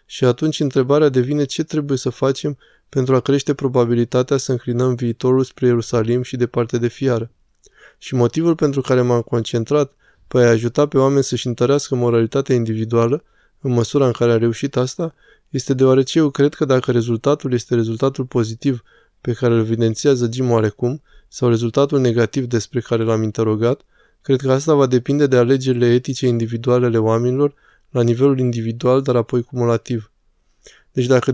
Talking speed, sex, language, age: 165 wpm, male, Romanian, 20-39